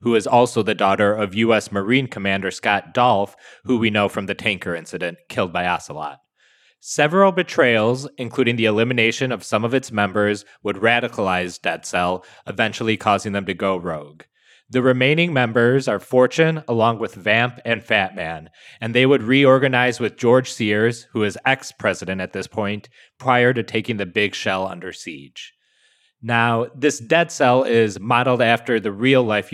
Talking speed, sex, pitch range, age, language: 165 wpm, male, 105-125 Hz, 30-49, English